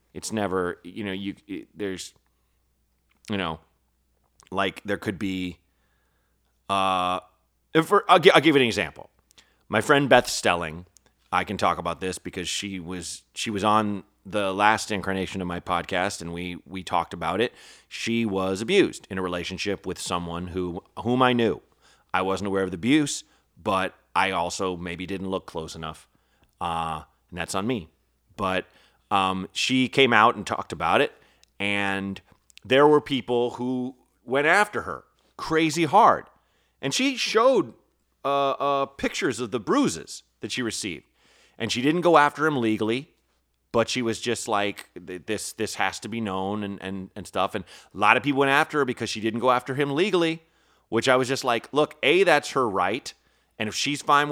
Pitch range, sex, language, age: 90-125 Hz, male, English, 30-49